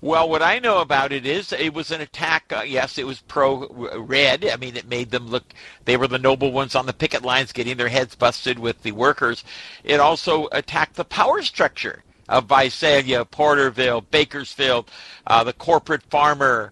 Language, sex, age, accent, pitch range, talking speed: English, male, 50-69, American, 120-145 Hz, 190 wpm